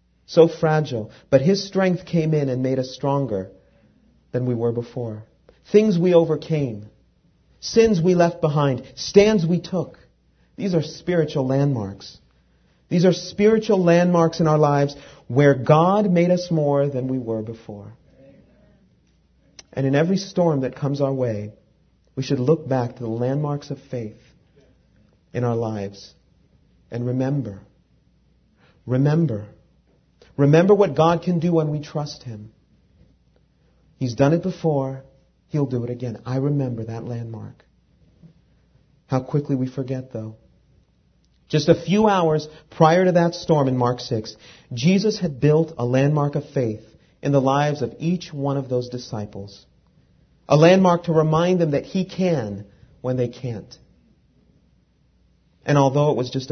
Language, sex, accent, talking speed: English, male, American, 145 wpm